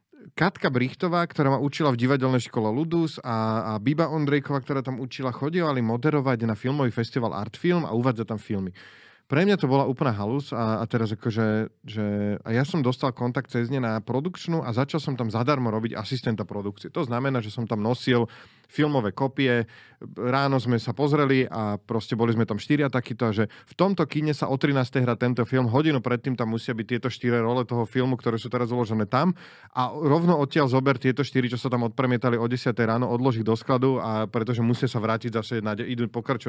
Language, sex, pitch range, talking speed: Slovak, male, 115-140 Hz, 200 wpm